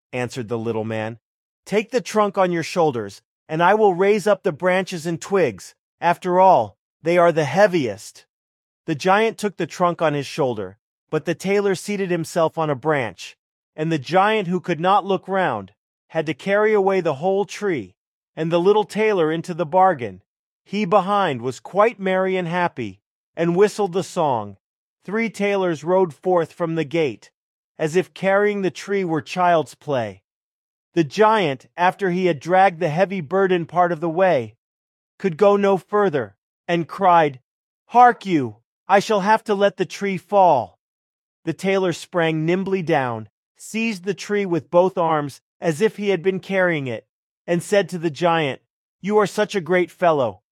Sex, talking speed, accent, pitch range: male, 175 wpm, American, 155-195 Hz